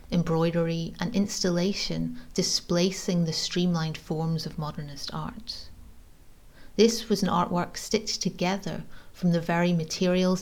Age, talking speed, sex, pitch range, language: 40-59, 115 wpm, female, 110-185 Hz, English